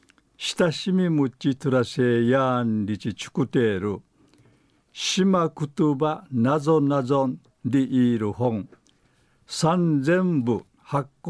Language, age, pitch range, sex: Japanese, 60-79, 115-150 Hz, male